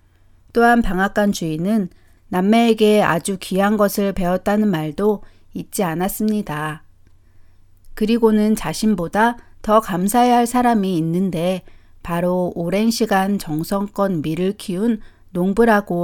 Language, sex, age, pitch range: Korean, female, 40-59, 160-215 Hz